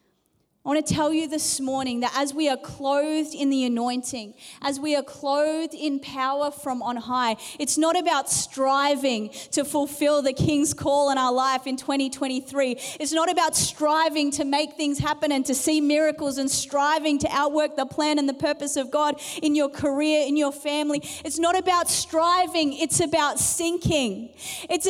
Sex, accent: female, Australian